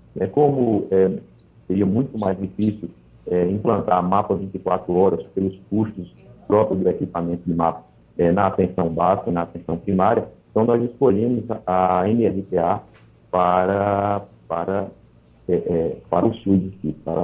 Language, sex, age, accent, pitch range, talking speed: Portuguese, male, 50-69, Brazilian, 90-115 Hz, 135 wpm